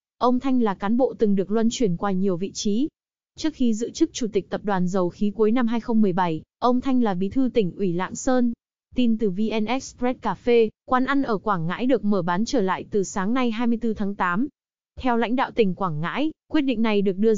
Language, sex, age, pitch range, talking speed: Vietnamese, female, 20-39, 205-250 Hz, 230 wpm